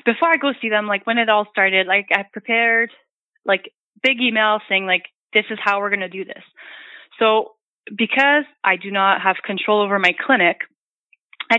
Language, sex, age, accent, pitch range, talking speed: English, female, 20-39, American, 200-255 Hz, 190 wpm